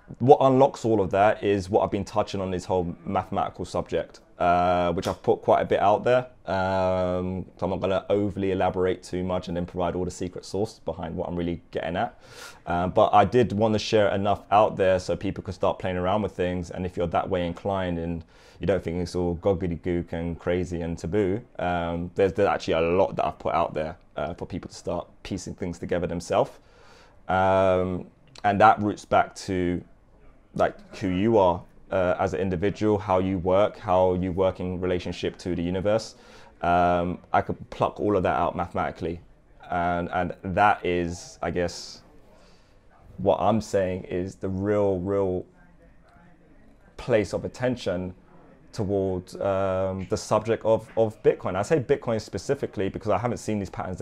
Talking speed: 190 wpm